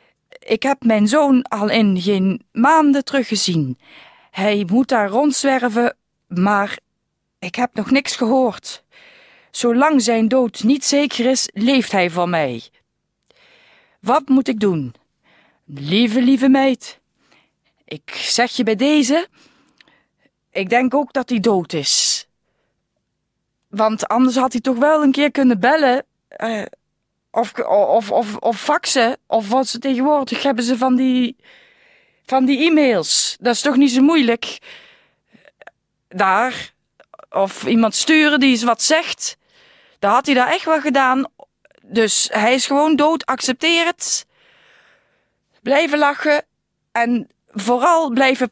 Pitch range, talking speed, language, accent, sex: 225-290 Hz, 135 wpm, Dutch, Dutch, female